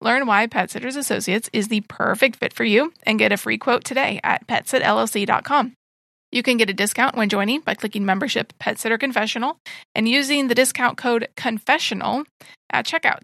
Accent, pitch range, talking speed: American, 215-255 Hz, 180 wpm